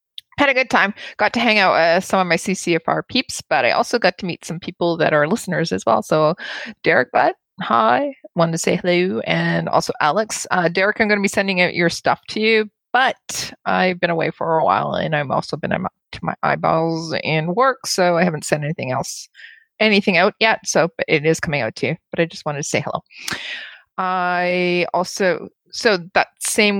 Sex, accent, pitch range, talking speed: female, American, 165-200 Hz, 215 wpm